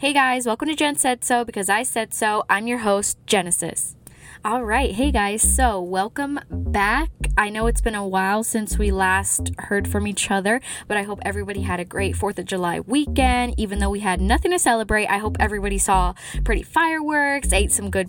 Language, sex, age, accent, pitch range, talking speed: English, female, 10-29, American, 190-260 Hz, 200 wpm